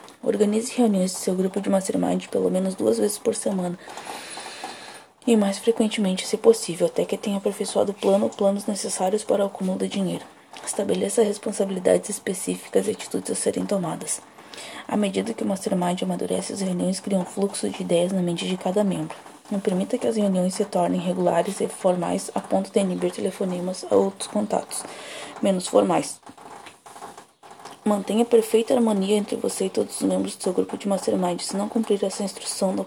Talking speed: 175 wpm